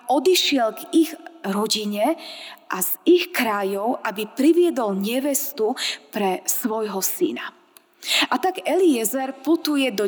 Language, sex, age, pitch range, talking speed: Slovak, female, 20-39, 220-330 Hz, 115 wpm